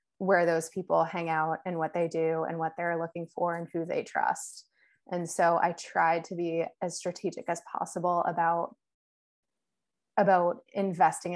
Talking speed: 165 wpm